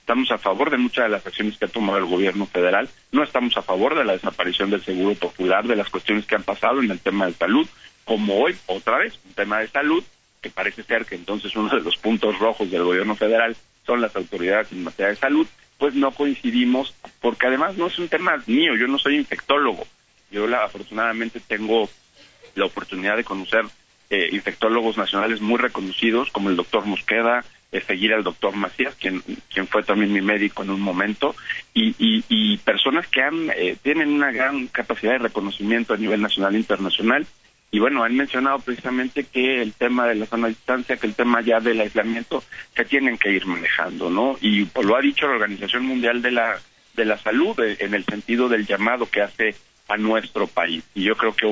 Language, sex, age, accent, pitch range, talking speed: Spanish, male, 40-59, Mexican, 105-130 Hz, 210 wpm